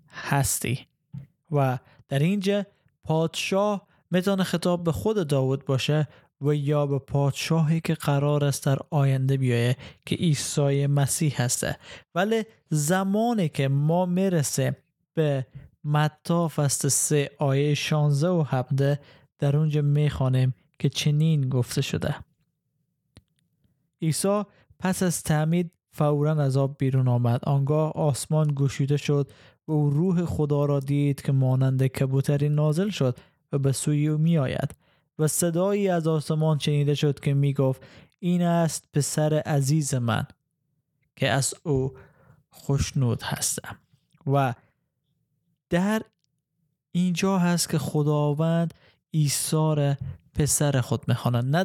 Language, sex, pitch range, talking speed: Persian, male, 140-160 Hz, 120 wpm